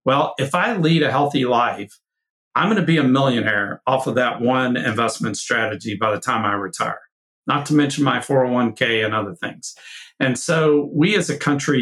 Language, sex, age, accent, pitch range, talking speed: English, male, 50-69, American, 115-145 Hz, 195 wpm